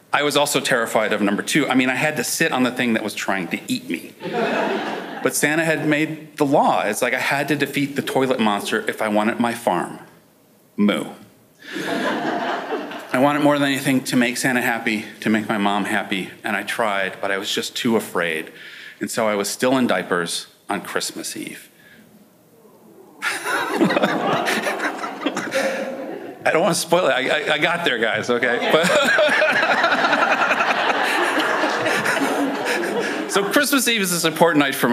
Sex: male